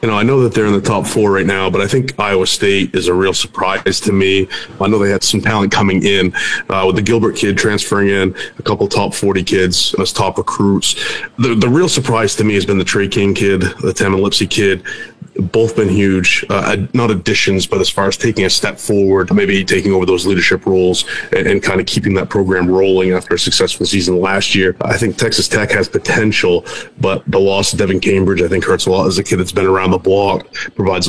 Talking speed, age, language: 235 wpm, 30-49, English